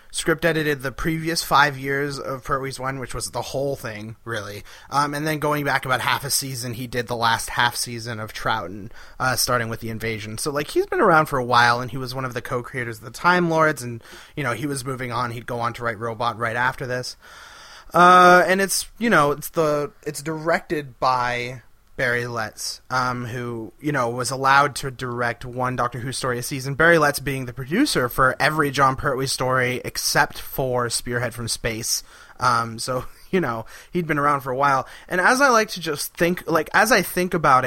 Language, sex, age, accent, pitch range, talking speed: English, male, 30-49, American, 120-160 Hz, 215 wpm